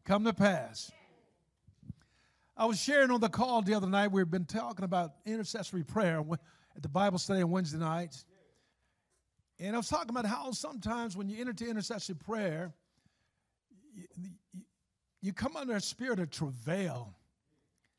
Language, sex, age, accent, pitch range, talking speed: English, male, 50-69, American, 170-230 Hz, 155 wpm